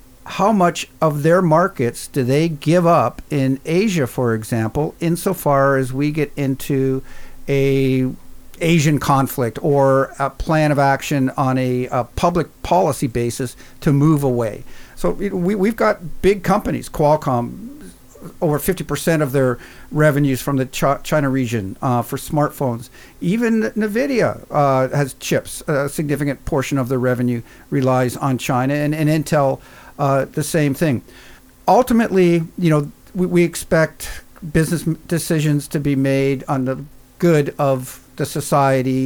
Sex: male